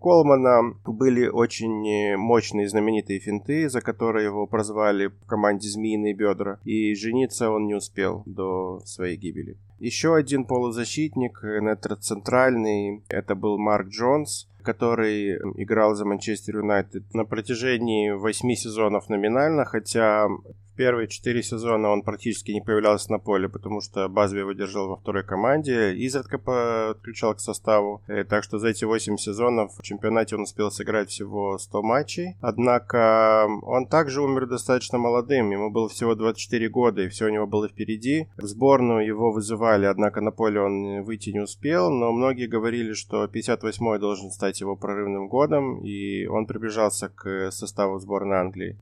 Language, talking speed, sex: Russian, 150 wpm, male